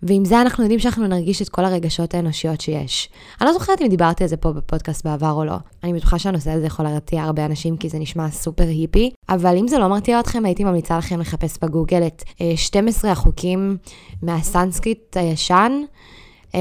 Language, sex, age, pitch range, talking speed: Hebrew, female, 10-29, 160-190 Hz, 190 wpm